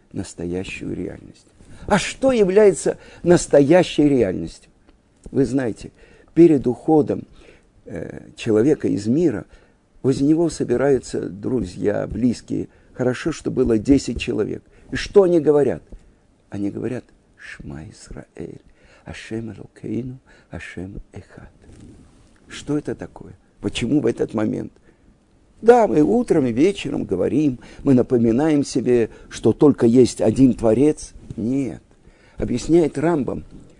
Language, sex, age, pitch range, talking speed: Russian, male, 60-79, 110-160 Hz, 110 wpm